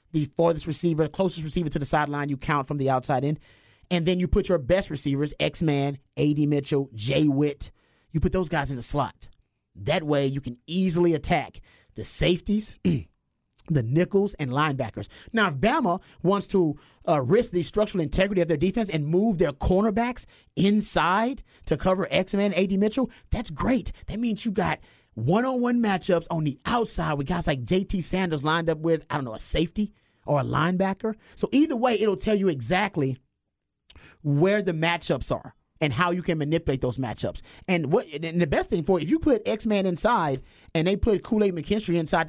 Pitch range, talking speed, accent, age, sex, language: 145-195 Hz, 185 wpm, American, 30-49, male, English